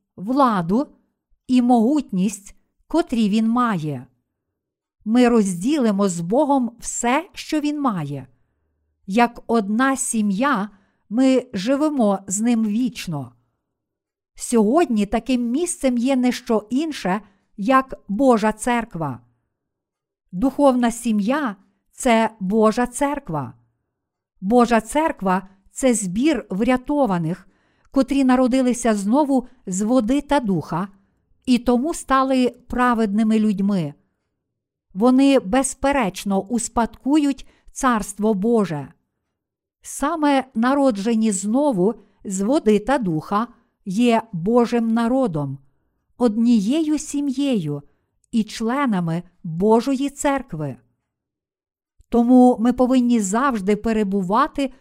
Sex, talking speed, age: female, 90 wpm, 50-69